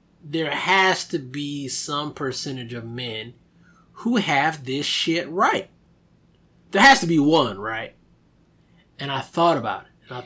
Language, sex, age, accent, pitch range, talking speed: English, male, 20-39, American, 120-175 Hz, 150 wpm